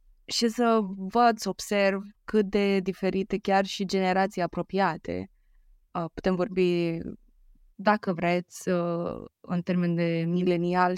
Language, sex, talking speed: Romanian, female, 110 wpm